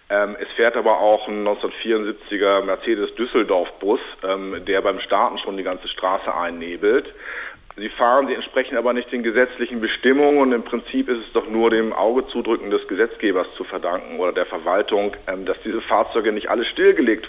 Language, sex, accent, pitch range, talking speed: German, male, German, 105-150 Hz, 165 wpm